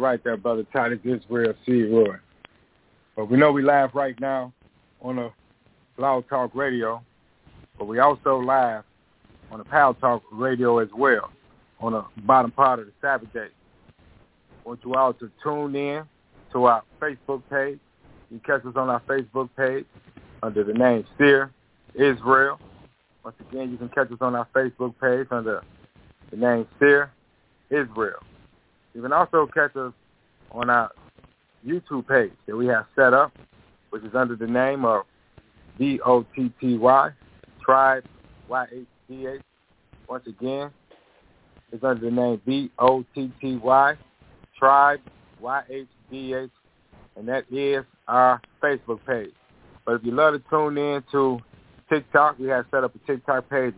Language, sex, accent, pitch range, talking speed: English, male, American, 120-135 Hz, 145 wpm